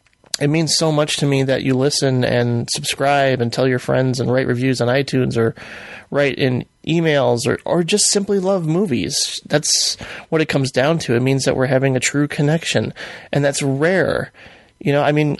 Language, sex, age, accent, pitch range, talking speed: English, male, 30-49, American, 130-170 Hz, 210 wpm